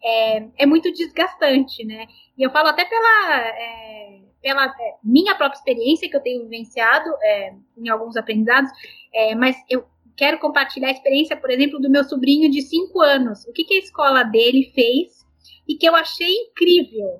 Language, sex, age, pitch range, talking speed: Portuguese, female, 10-29, 245-315 Hz, 165 wpm